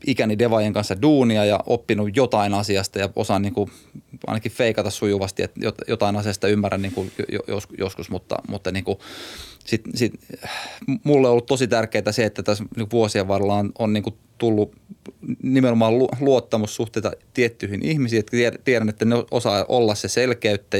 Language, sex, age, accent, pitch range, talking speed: Finnish, male, 20-39, native, 100-120 Hz, 165 wpm